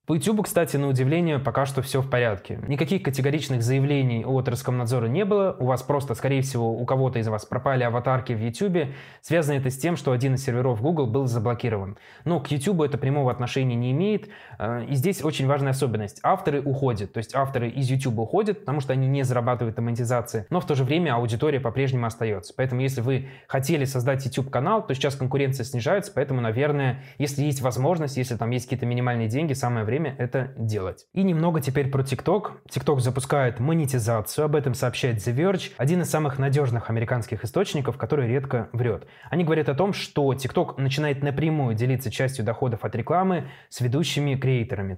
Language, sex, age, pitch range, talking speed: Russian, male, 20-39, 125-150 Hz, 185 wpm